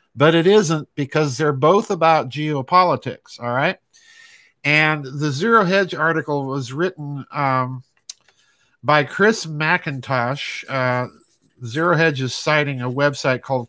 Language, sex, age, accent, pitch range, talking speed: English, male, 50-69, American, 135-175 Hz, 125 wpm